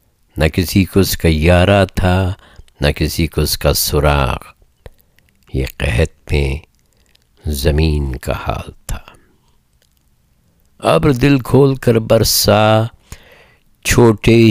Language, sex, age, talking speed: Urdu, male, 60-79, 110 wpm